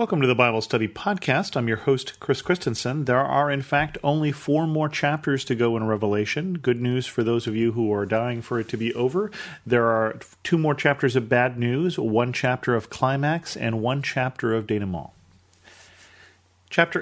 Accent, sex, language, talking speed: American, male, English, 195 wpm